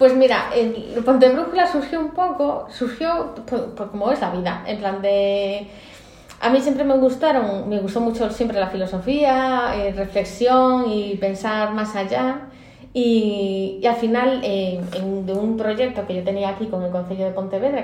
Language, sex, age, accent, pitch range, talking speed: Spanish, female, 20-39, Spanish, 195-250 Hz, 180 wpm